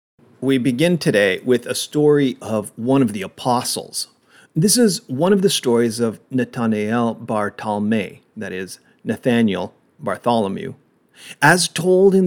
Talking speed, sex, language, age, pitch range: 130 wpm, male, English, 40-59, 120-170 Hz